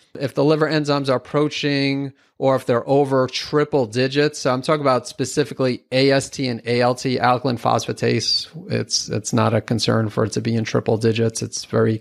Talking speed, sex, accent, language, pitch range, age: 180 wpm, male, American, English, 120-140 Hz, 30-49